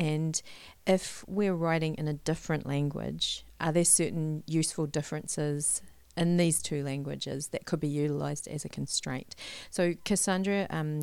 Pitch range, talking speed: 150-175 Hz, 145 wpm